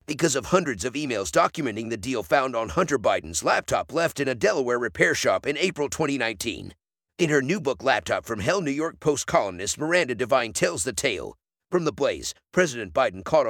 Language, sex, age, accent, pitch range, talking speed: English, male, 50-69, American, 120-165 Hz, 195 wpm